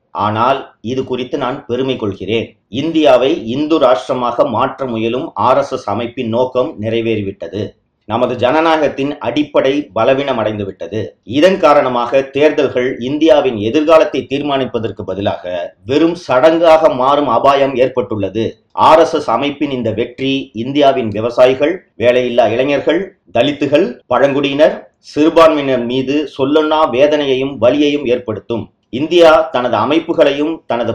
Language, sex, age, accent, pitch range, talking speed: Tamil, male, 30-49, native, 120-150 Hz, 110 wpm